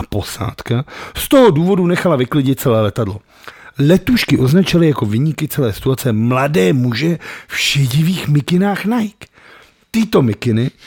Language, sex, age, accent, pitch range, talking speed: Czech, male, 50-69, native, 120-180 Hz, 120 wpm